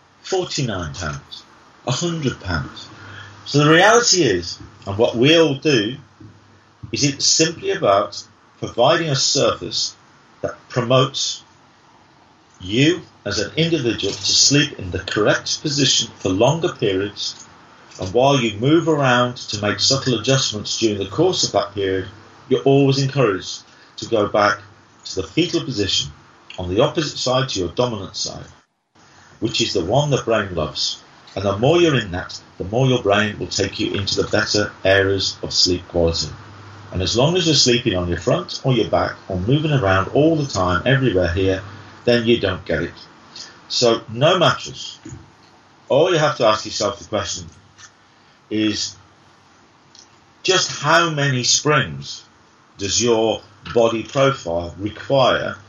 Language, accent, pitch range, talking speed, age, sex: English, British, 100-135 Hz, 150 wpm, 40-59, male